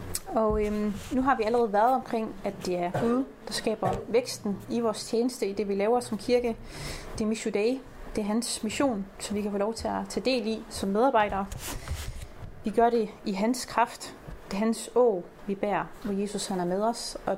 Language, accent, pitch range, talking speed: Danish, native, 195-230 Hz, 215 wpm